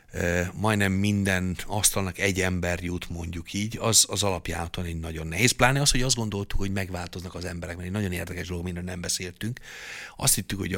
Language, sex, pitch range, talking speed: Hungarian, male, 85-95 Hz, 185 wpm